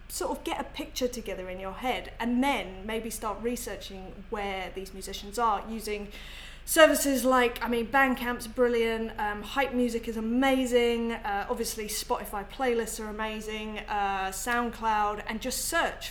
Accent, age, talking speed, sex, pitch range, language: British, 20-39, 155 wpm, female, 205-250 Hz, English